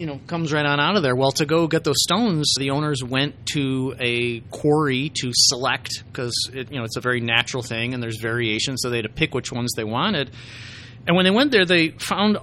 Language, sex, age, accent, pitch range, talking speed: English, male, 30-49, American, 125-155 Hz, 245 wpm